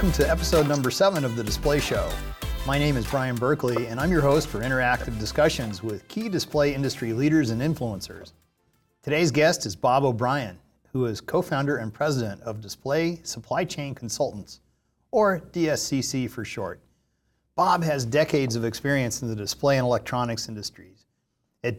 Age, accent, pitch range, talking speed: 40-59, American, 115-145 Hz, 160 wpm